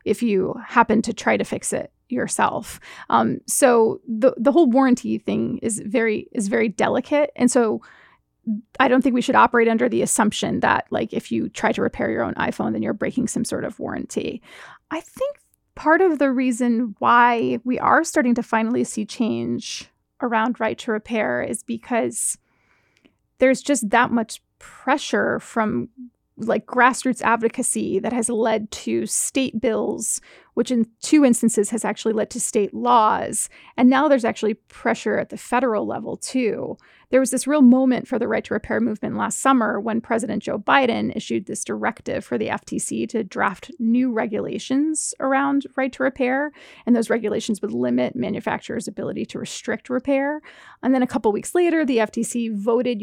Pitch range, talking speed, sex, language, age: 225-260 Hz, 175 wpm, female, English, 30-49